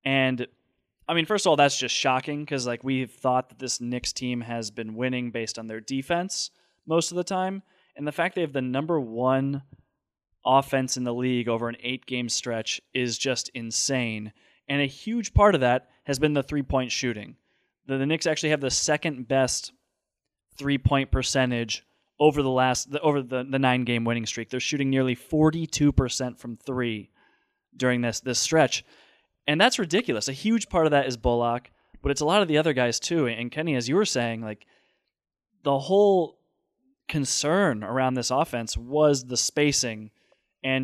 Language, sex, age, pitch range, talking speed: English, male, 20-39, 125-150 Hz, 180 wpm